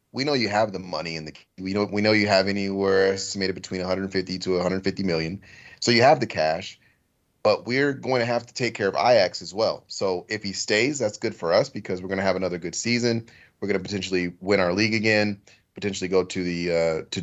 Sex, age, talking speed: male, 30-49, 235 wpm